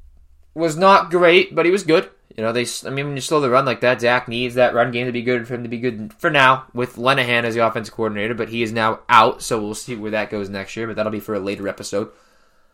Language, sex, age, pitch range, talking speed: English, male, 10-29, 110-140 Hz, 285 wpm